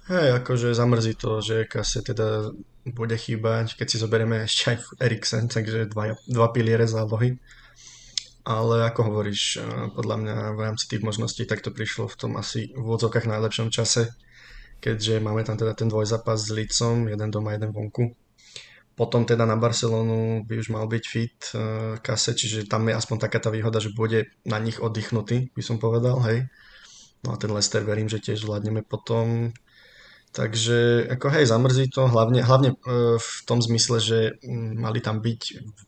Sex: male